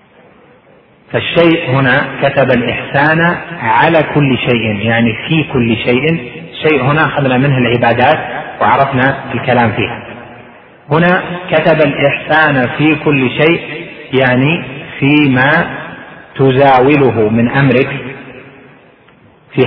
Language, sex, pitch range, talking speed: Arabic, male, 120-145 Hz, 95 wpm